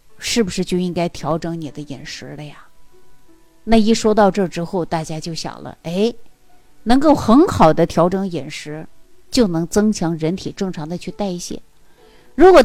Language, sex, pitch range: Chinese, female, 165-230 Hz